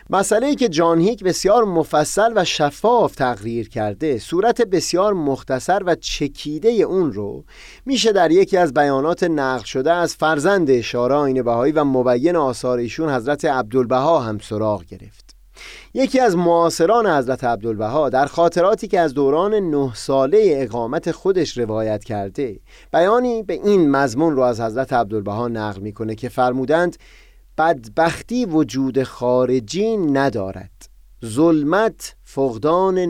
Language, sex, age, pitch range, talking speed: Persian, male, 30-49, 120-180 Hz, 125 wpm